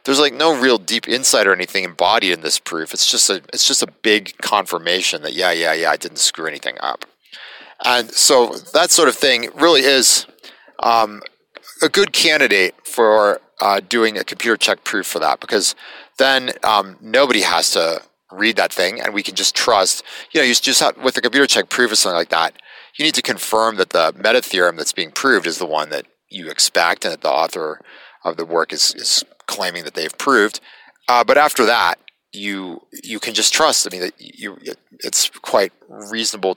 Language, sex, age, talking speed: English, male, 30-49, 205 wpm